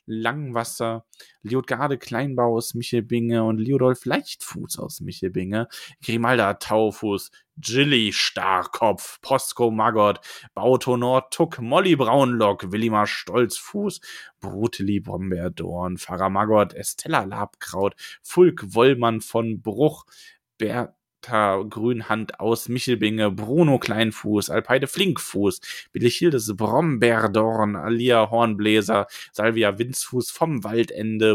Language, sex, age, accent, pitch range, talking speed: German, male, 20-39, German, 110-130 Hz, 95 wpm